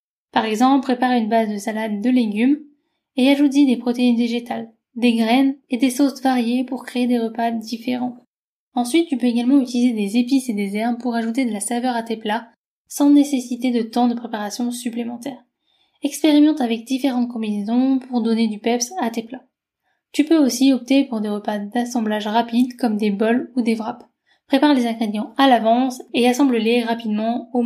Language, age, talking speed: French, 10-29, 185 wpm